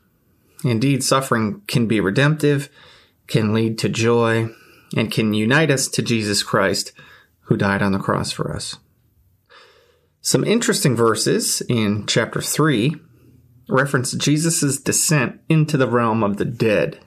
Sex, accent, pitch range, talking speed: male, American, 115-140 Hz, 135 wpm